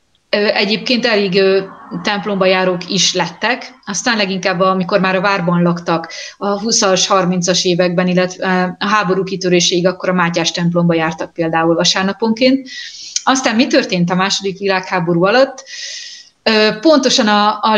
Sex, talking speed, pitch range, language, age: female, 130 wpm, 185-215 Hz, Hungarian, 30-49